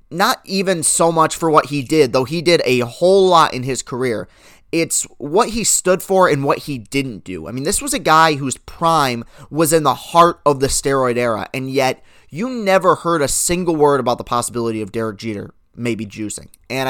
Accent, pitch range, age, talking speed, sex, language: American, 125-165 Hz, 30-49, 215 wpm, male, English